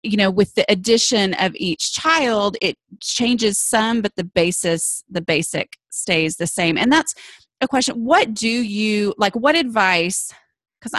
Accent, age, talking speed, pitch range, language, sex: American, 30-49, 165 wpm, 180-230 Hz, English, female